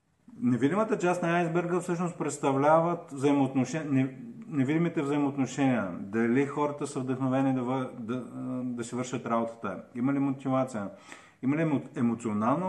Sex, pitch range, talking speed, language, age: male, 115-140 Hz, 125 wpm, Bulgarian, 50-69